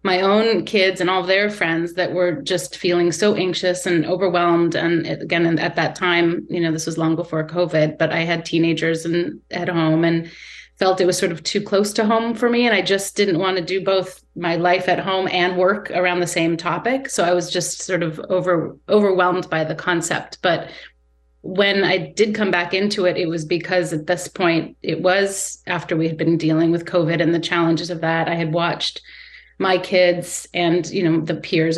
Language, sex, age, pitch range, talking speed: English, female, 30-49, 165-190 Hz, 215 wpm